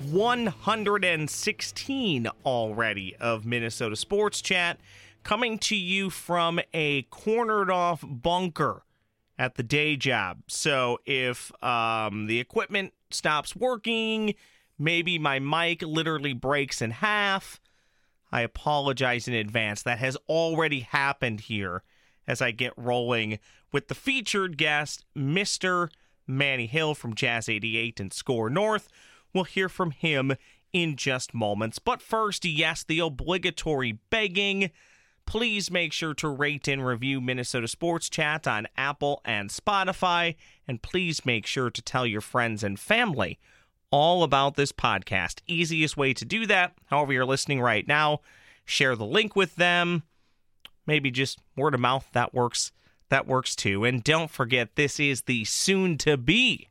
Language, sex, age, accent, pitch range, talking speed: English, male, 30-49, American, 125-175 Hz, 140 wpm